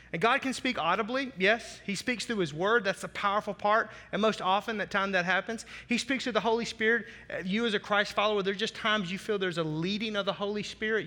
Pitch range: 185-230 Hz